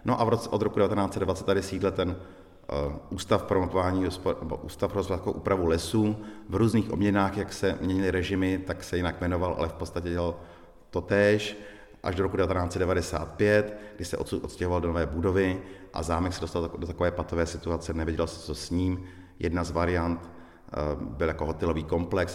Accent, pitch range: native, 80-90 Hz